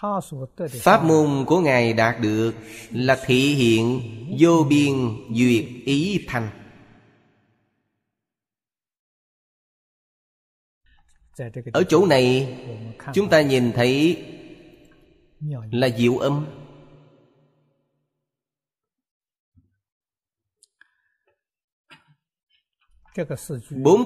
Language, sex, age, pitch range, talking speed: Vietnamese, male, 30-49, 115-140 Hz, 60 wpm